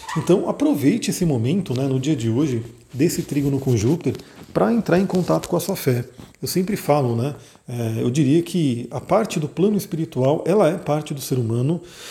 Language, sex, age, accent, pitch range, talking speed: Portuguese, male, 40-59, Brazilian, 130-170 Hz, 200 wpm